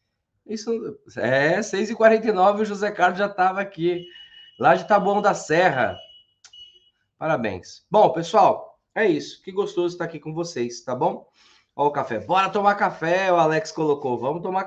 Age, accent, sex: 20-39, Brazilian, male